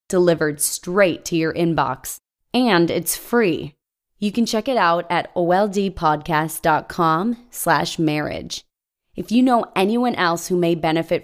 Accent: American